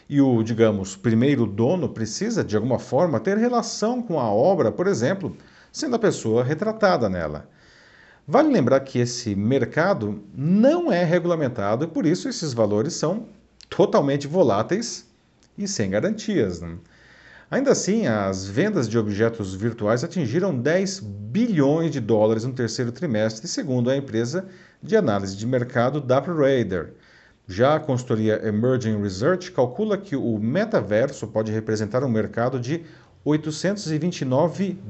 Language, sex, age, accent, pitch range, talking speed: Portuguese, male, 50-69, Brazilian, 105-155 Hz, 135 wpm